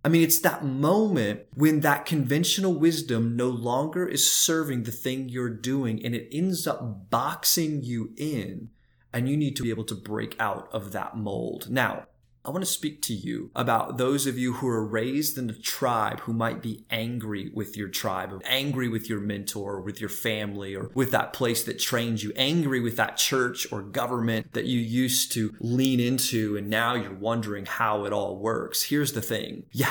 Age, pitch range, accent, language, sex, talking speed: 30-49, 115-150 Hz, American, English, male, 195 wpm